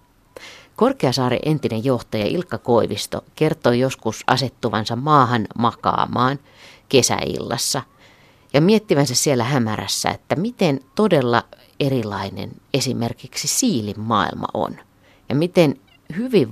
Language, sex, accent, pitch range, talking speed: Finnish, female, native, 110-150 Hz, 95 wpm